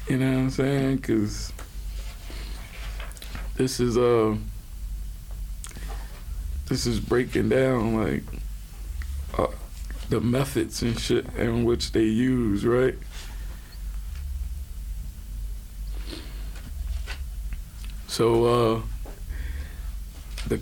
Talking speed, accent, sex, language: 80 wpm, American, male, English